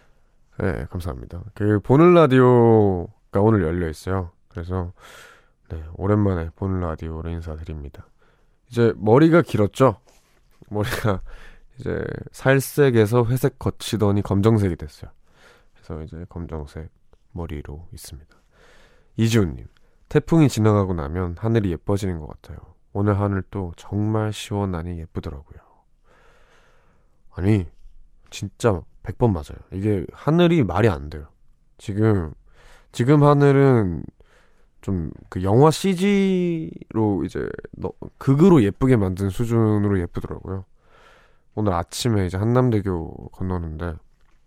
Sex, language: male, Korean